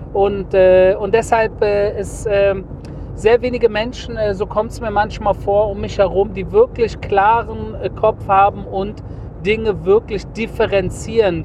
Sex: male